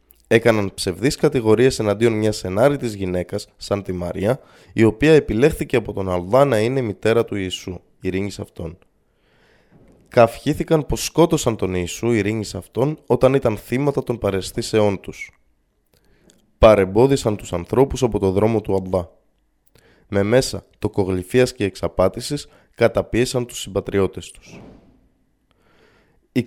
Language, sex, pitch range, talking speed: Greek, male, 95-120 Hz, 125 wpm